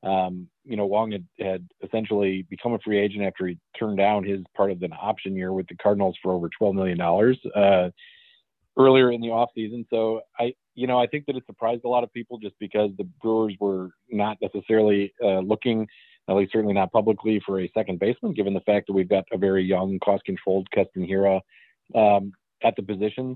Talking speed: 205 wpm